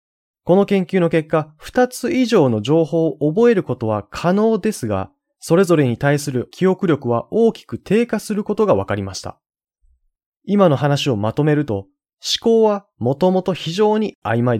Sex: male